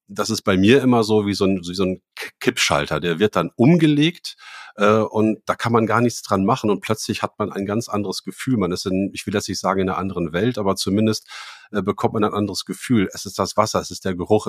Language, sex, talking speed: German, male, 250 wpm